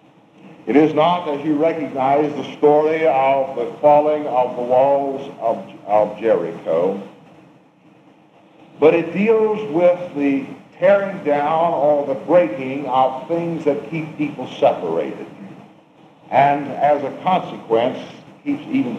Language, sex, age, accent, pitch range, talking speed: English, male, 60-79, American, 145-185 Hz, 120 wpm